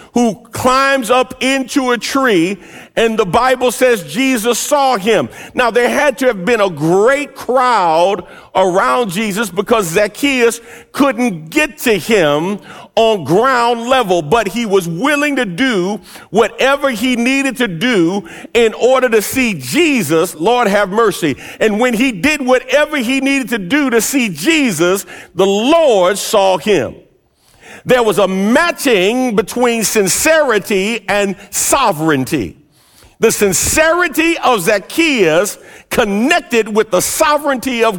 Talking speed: 135 wpm